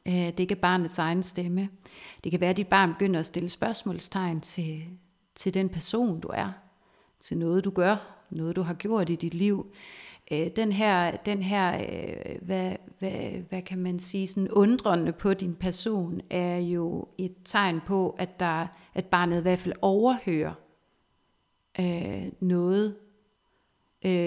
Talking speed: 150 wpm